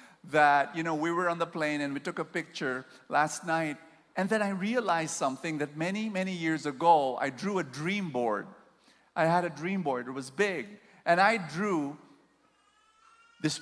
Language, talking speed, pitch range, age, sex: English, 185 wpm, 150-200 Hz, 50-69, male